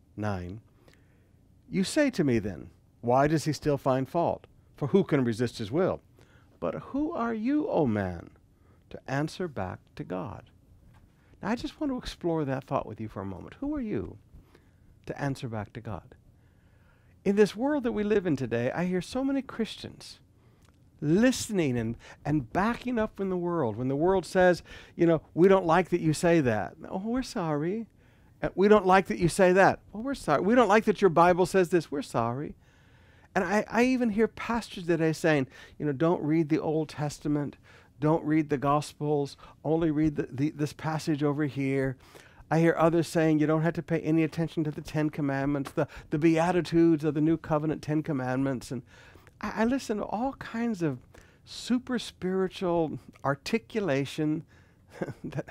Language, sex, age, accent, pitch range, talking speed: English, male, 60-79, American, 125-185 Hz, 185 wpm